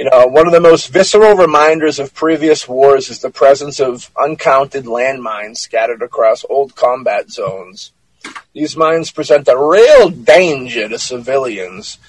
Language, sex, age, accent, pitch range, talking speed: English, male, 30-49, American, 130-155 Hz, 150 wpm